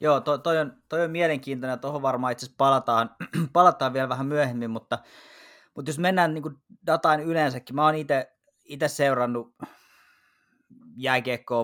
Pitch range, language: 110-140 Hz, Finnish